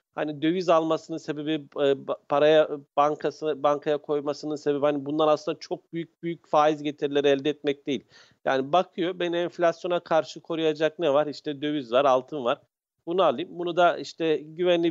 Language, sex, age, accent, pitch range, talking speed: Turkish, male, 50-69, native, 140-165 Hz, 155 wpm